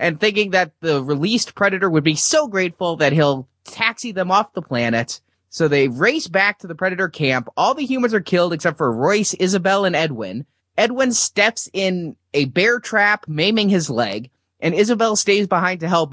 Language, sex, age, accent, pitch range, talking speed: English, male, 20-39, American, 140-200 Hz, 190 wpm